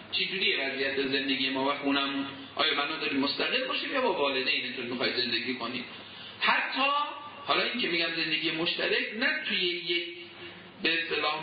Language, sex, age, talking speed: Persian, male, 50-69, 150 wpm